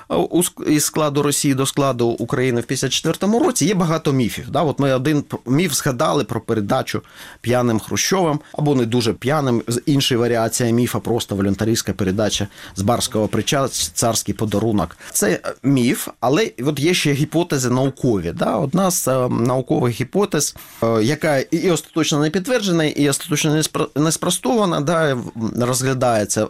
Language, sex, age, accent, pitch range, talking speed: Ukrainian, male, 30-49, native, 115-155 Hz, 135 wpm